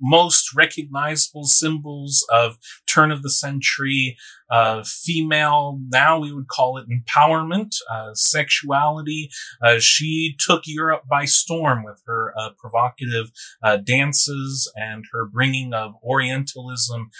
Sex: male